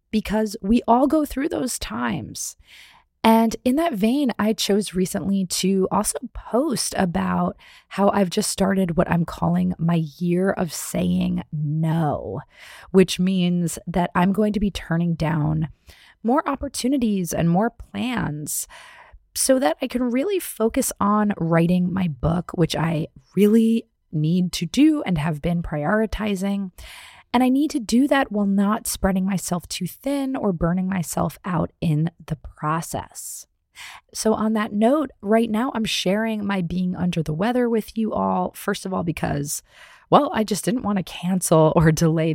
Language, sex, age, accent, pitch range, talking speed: English, female, 30-49, American, 170-225 Hz, 160 wpm